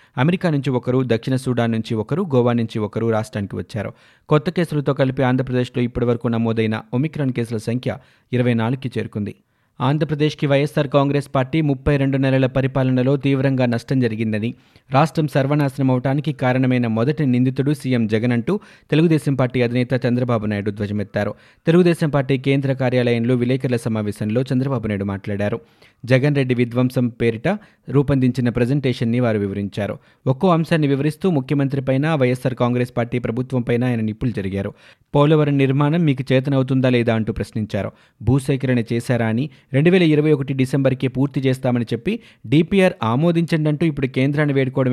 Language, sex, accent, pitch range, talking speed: Telugu, male, native, 120-140 Hz, 135 wpm